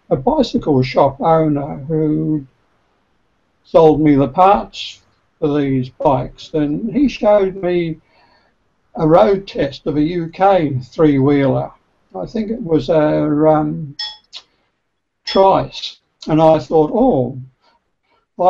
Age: 60-79